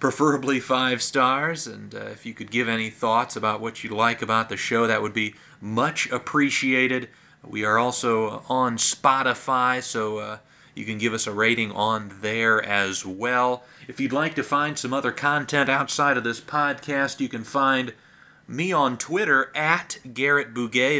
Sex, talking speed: male, 175 wpm